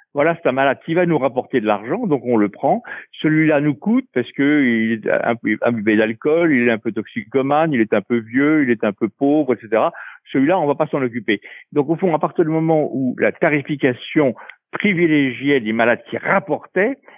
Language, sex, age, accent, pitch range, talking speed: French, male, 60-79, French, 130-180 Hz, 220 wpm